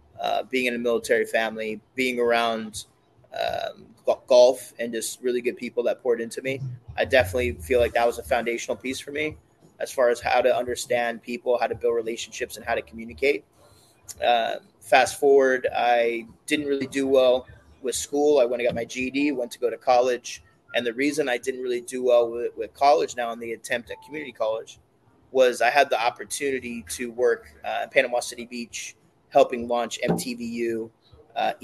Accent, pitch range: American, 115-145 Hz